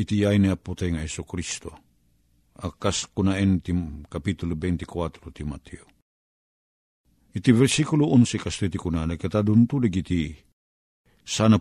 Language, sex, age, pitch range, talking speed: Filipino, male, 50-69, 85-115 Hz, 125 wpm